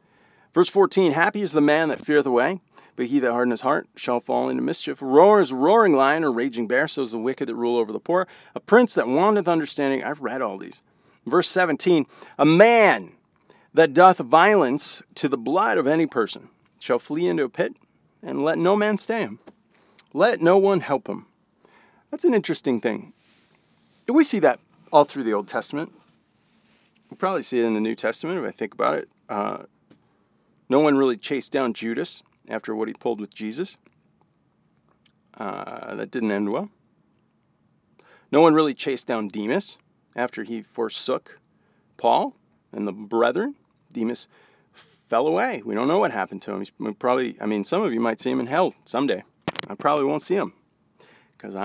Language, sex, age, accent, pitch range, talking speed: English, male, 40-59, American, 115-185 Hz, 185 wpm